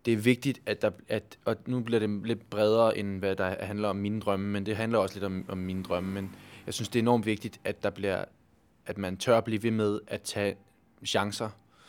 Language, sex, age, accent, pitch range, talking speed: Danish, male, 20-39, native, 100-115 Hz, 240 wpm